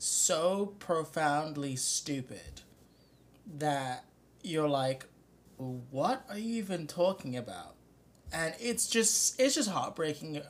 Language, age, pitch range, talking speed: English, 20-39, 125-160 Hz, 105 wpm